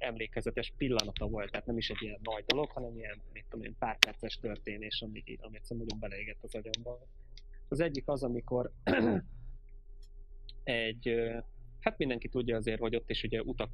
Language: Hungarian